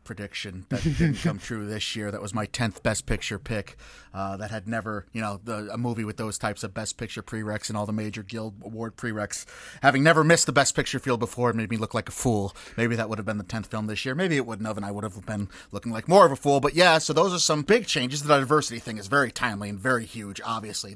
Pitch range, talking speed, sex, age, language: 110-145 Hz, 270 wpm, male, 30-49, English